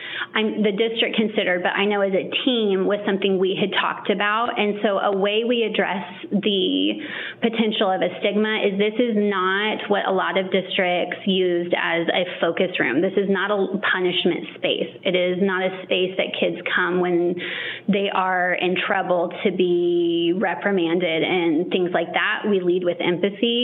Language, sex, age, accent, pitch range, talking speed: English, female, 30-49, American, 180-205 Hz, 180 wpm